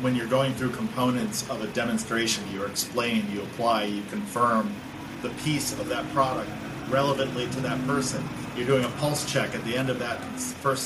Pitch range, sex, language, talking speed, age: 110-135 Hz, male, English, 190 wpm, 40-59